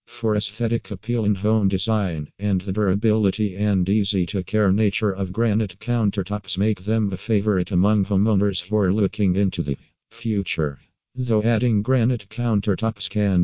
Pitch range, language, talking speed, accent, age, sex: 95-110 Hz, English, 140 wpm, American, 50-69, male